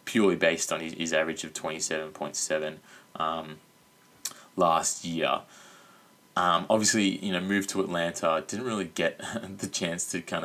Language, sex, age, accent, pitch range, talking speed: English, male, 20-39, Australian, 85-100 Hz, 145 wpm